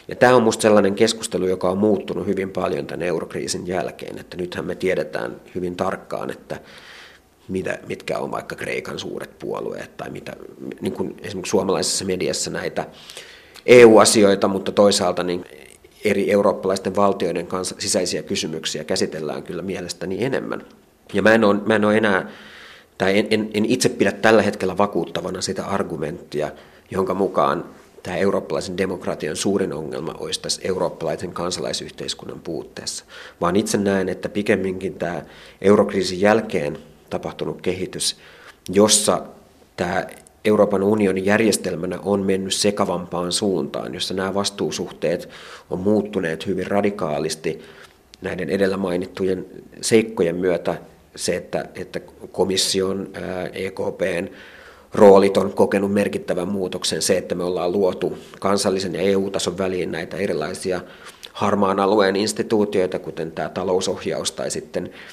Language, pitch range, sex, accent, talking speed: Finnish, 90-105 Hz, male, native, 120 wpm